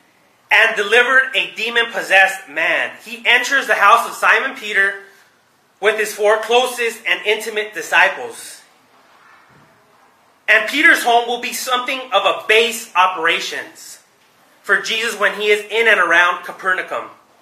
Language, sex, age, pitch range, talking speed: English, male, 30-49, 190-240 Hz, 130 wpm